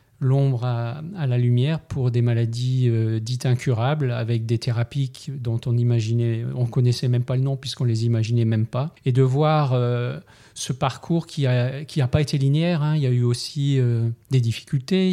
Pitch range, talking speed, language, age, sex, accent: 120-145 Hz, 185 wpm, French, 40-59, male, French